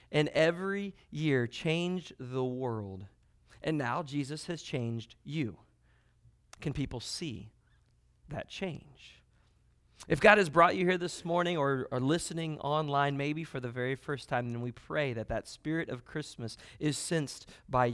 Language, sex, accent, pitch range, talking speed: English, male, American, 130-175 Hz, 155 wpm